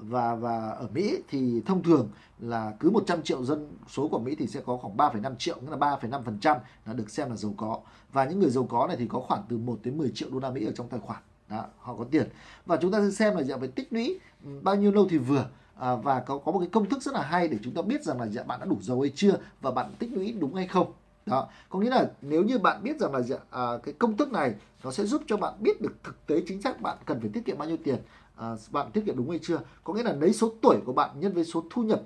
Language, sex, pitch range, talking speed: Vietnamese, male, 130-195 Hz, 295 wpm